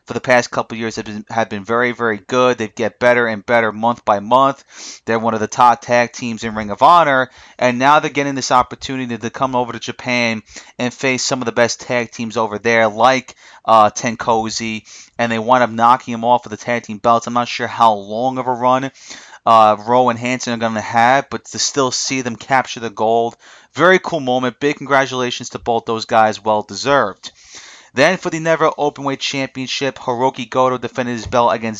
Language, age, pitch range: English, 30-49, 115-130 Hz